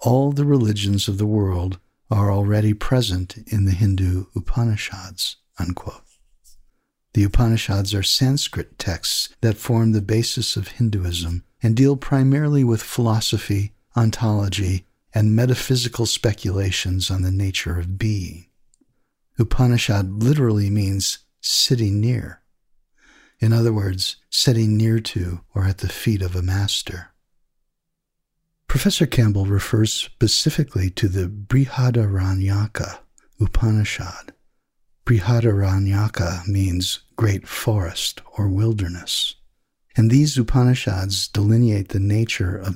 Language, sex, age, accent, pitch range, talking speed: English, male, 50-69, American, 95-120 Hz, 110 wpm